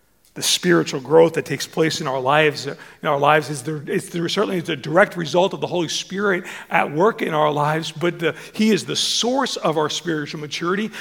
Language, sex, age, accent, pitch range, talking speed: English, male, 40-59, American, 180-235 Hz, 220 wpm